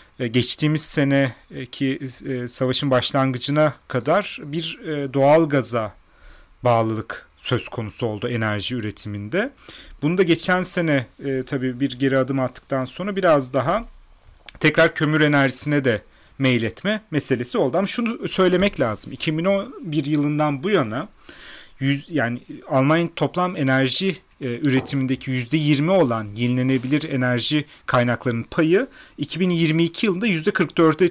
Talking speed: 105 wpm